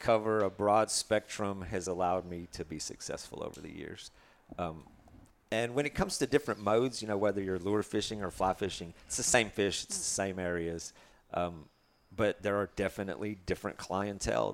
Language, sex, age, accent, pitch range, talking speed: English, male, 40-59, American, 90-105 Hz, 185 wpm